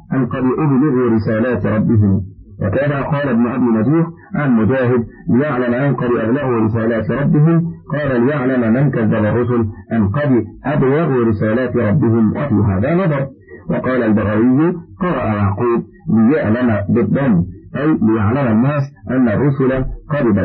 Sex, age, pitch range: male, 50-69, 110-135 Hz